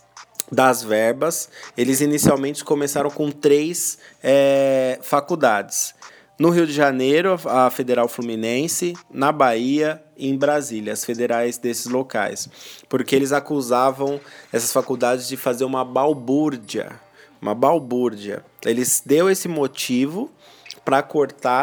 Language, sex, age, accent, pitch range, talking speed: Portuguese, male, 20-39, Brazilian, 120-155 Hz, 115 wpm